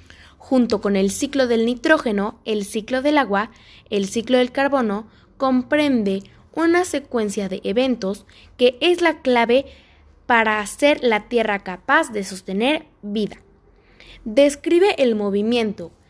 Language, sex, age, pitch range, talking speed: Spanish, female, 20-39, 200-290 Hz, 125 wpm